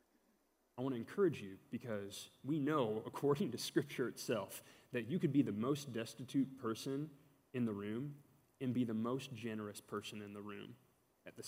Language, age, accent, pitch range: English, 20-39, American, 110-140 Hz